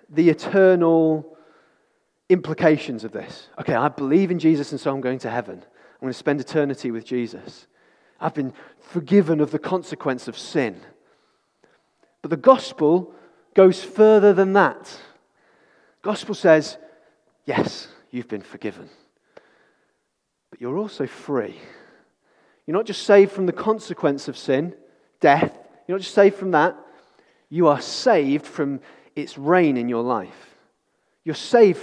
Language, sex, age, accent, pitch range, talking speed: English, male, 30-49, British, 145-195 Hz, 145 wpm